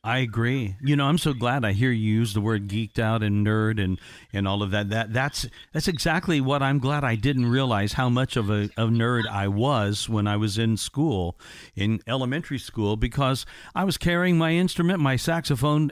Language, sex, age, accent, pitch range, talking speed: English, male, 50-69, American, 110-140 Hz, 210 wpm